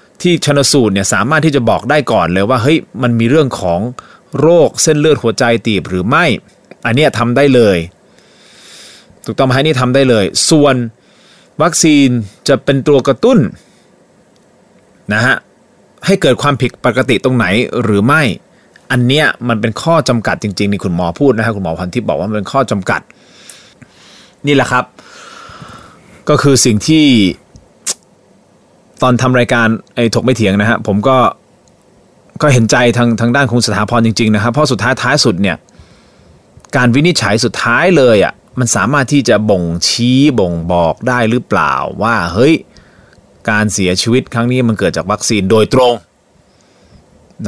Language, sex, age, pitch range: Thai, male, 20-39, 110-140 Hz